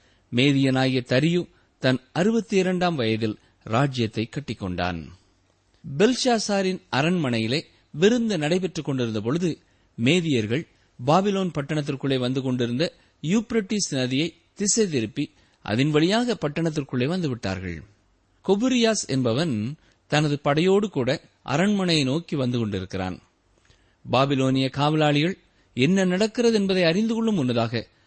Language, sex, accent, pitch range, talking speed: Tamil, male, native, 110-180 Hz, 90 wpm